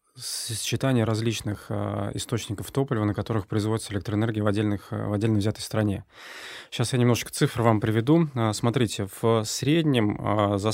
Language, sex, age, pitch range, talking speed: Russian, male, 20-39, 105-120 Hz, 135 wpm